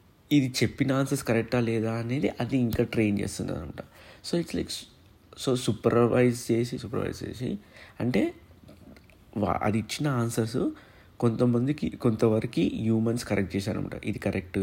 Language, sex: Telugu, male